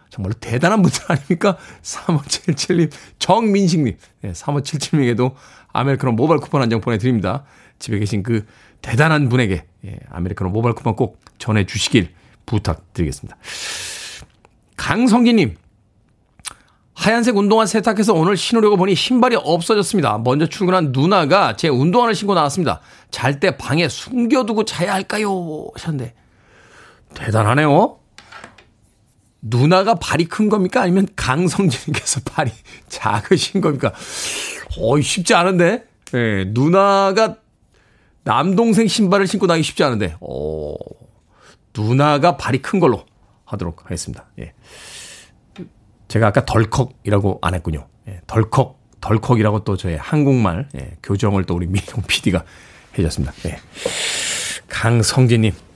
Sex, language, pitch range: male, Korean, 105-175 Hz